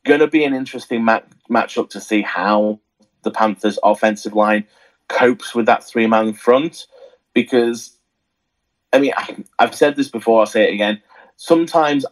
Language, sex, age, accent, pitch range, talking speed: English, male, 30-49, British, 105-120 Hz, 155 wpm